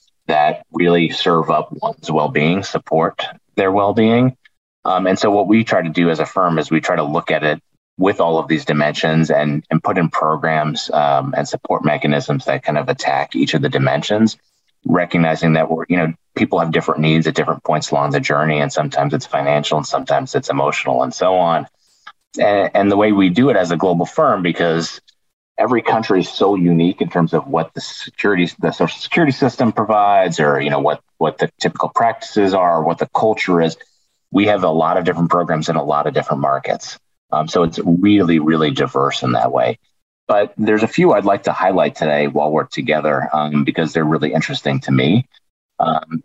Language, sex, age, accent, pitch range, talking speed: English, male, 30-49, American, 75-90 Hz, 205 wpm